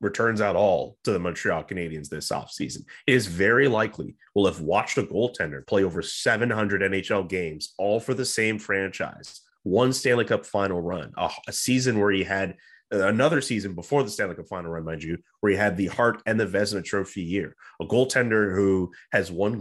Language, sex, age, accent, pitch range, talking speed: English, male, 30-49, American, 95-115 Hz, 195 wpm